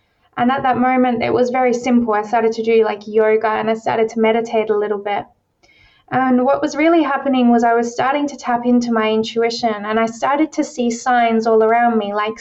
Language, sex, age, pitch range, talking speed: English, female, 20-39, 225-255 Hz, 220 wpm